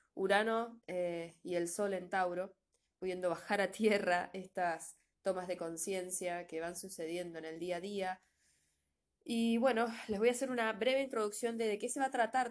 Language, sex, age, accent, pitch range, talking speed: Spanish, female, 20-39, Argentinian, 175-205 Hz, 185 wpm